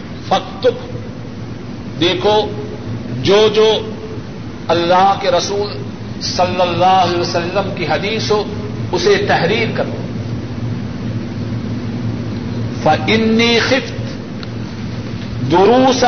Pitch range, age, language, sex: 115-190 Hz, 50-69, Urdu, male